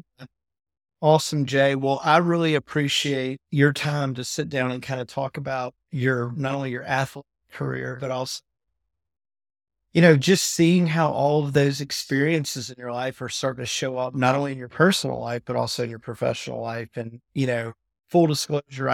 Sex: male